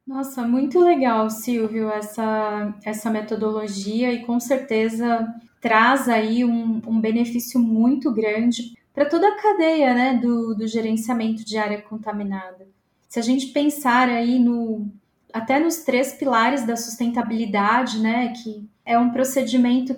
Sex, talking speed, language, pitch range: female, 130 wpm, Portuguese, 220-260 Hz